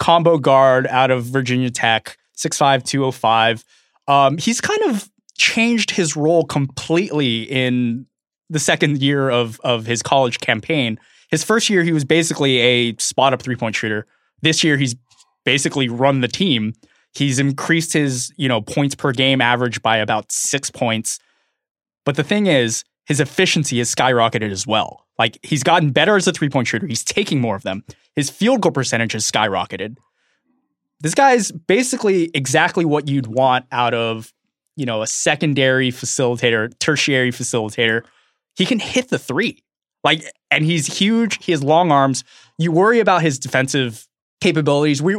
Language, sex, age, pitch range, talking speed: English, male, 20-39, 120-165 Hz, 160 wpm